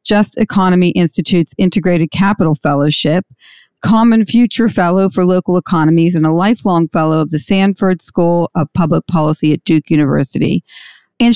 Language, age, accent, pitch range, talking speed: English, 50-69, American, 170-210 Hz, 145 wpm